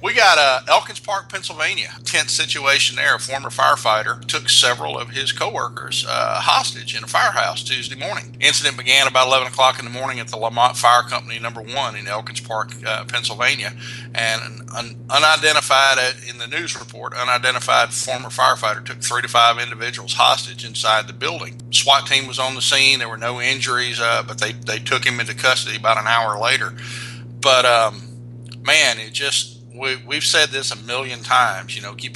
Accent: American